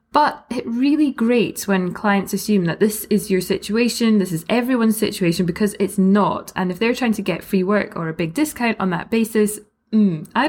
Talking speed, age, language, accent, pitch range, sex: 205 wpm, 20-39, English, British, 180-250 Hz, female